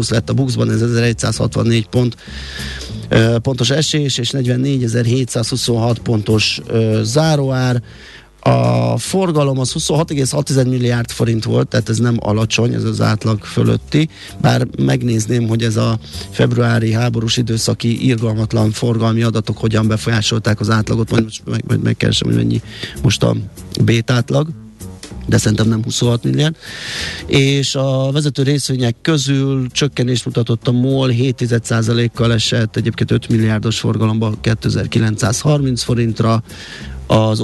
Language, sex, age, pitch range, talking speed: Hungarian, male, 30-49, 110-125 Hz, 130 wpm